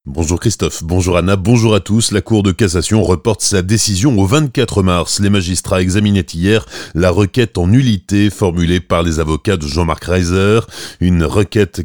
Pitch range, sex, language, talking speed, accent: 90-110 Hz, male, French, 170 wpm, French